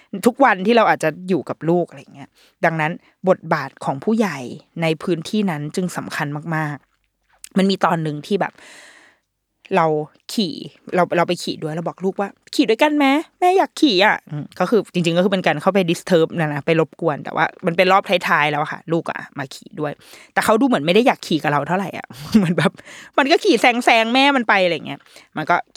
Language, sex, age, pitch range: Thai, female, 20-39, 160-235 Hz